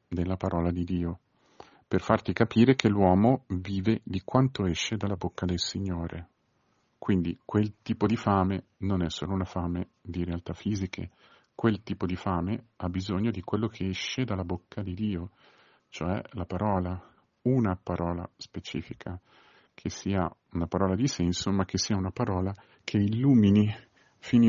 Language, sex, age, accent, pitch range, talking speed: Italian, male, 50-69, native, 90-110 Hz, 155 wpm